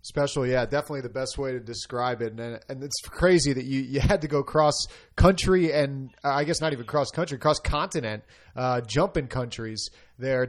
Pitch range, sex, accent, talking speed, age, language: 125-155 Hz, male, American, 185 wpm, 30-49, English